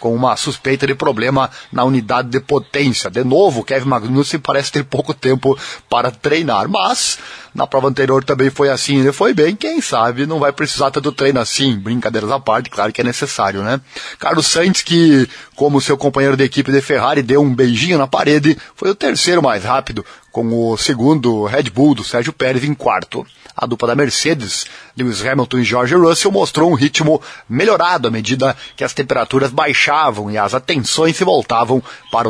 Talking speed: 185 wpm